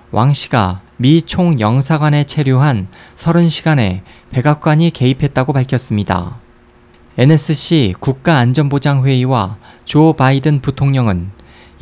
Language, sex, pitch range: Korean, male, 120-155 Hz